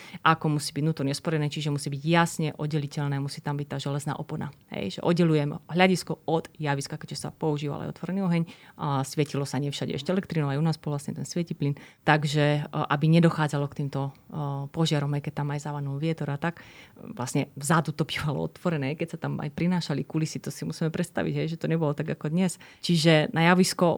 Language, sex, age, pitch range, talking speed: Slovak, female, 30-49, 145-170 Hz, 200 wpm